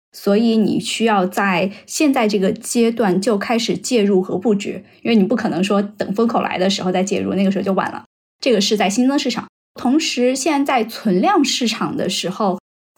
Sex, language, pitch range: female, Chinese, 190-225 Hz